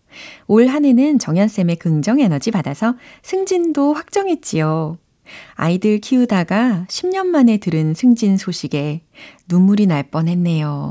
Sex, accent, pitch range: female, native, 160-230 Hz